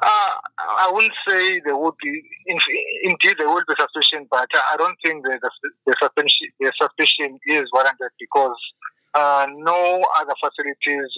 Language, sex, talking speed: English, male, 150 wpm